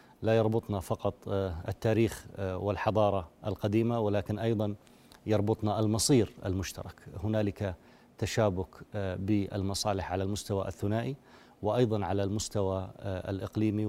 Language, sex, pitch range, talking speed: Arabic, male, 95-110 Hz, 90 wpm